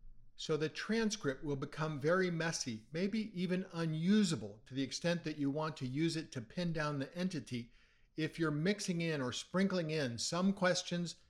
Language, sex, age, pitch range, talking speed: English, male, 50-69, 130-170 Hz, 175 wpm